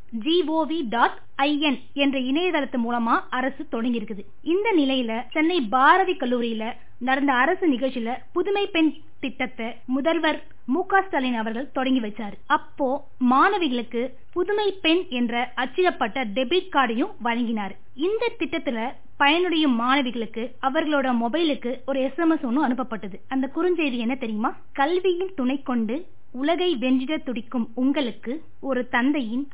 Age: 20-39